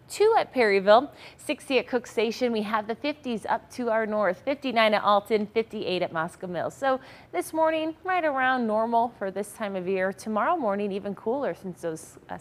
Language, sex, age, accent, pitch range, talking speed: English, female, 30-49, American, 200-250 Hz, 190 wpm